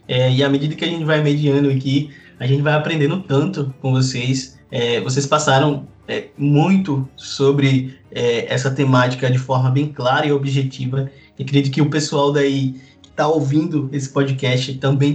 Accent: Brazilian